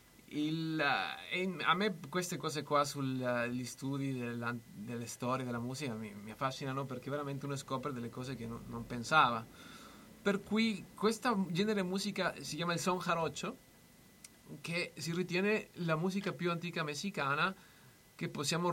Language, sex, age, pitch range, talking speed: Italian, male, 30-49, 130-170 Hz, 155 wpm